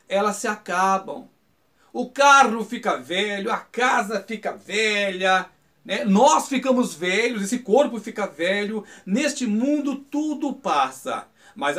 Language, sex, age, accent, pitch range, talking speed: Portuguese, male, 60-79, Brazilian, 200-255 Hz, 120 wpm